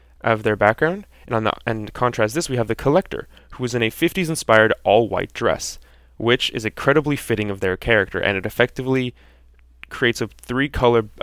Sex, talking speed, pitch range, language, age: male, 175 wpm, 95-120 Hz, English, 20-39